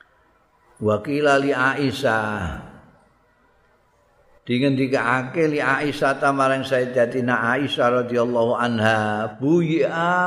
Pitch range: 100-125 Hz